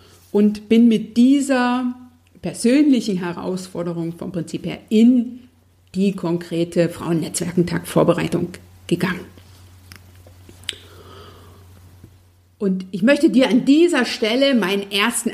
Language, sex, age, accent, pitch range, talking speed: German, female, 50-69, German, 175-225 Hz, 95 wpm